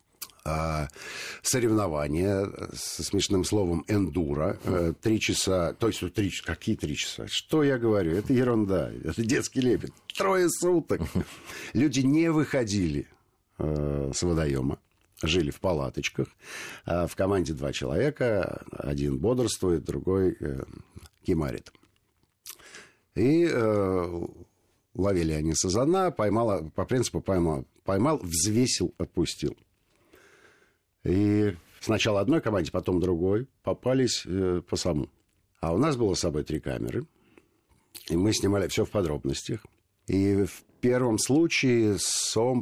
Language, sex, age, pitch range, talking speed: Russian, male, 50-69, 85-115 Hz, 110 wpm